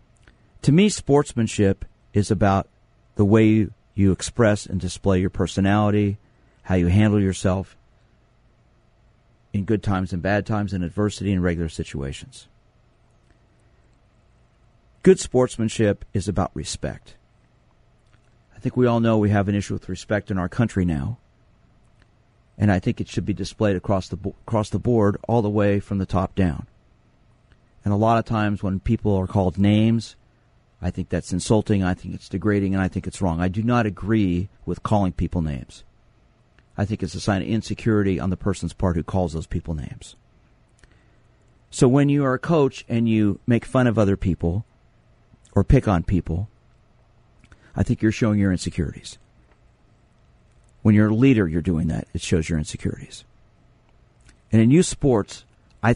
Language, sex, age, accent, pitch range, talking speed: English, male, 40-59, American, 95-115 Hz, 165 wpm